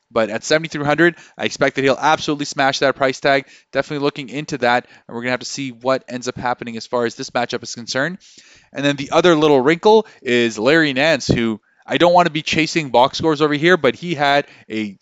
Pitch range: 130-150 Hz